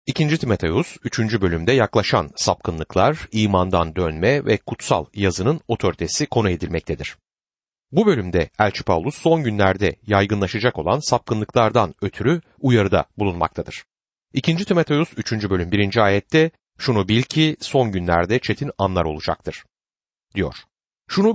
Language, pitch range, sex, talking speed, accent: Turkish, 100-145 Hz, male, 120 wpm, native